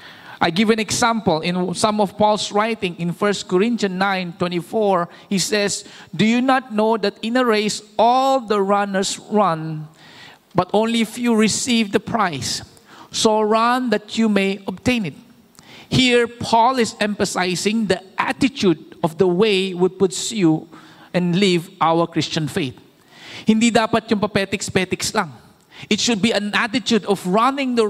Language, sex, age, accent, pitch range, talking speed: English, male, 50-69, Filipino, 180-225 Hz, 140 wpm